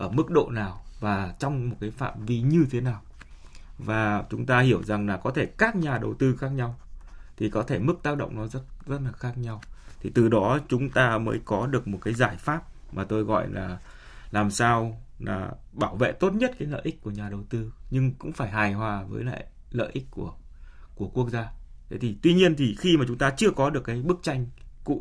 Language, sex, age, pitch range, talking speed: Vietnamese, male, 20-39, 100-130 Hz, 235 wpm